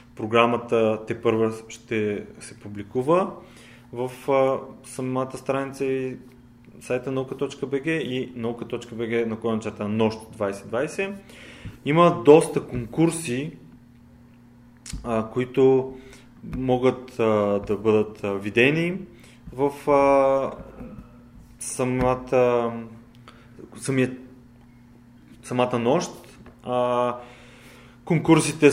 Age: 20-39